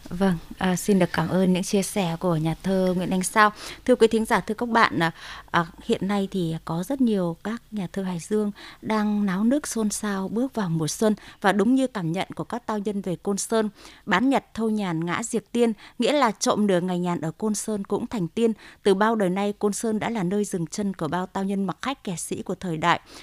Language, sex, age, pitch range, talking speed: Vietnamese, female, 20-39, 180-225 Hz, 250 wpm